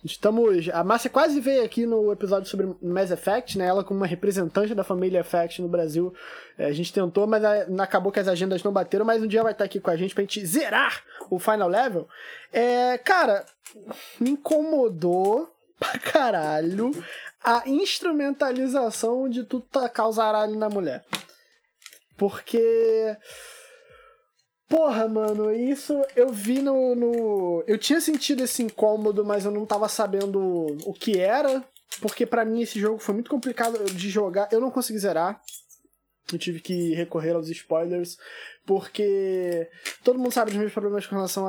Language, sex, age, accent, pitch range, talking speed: Portuguese, male, 20-39, Brazilian, 185-235 Hz, 155 wpm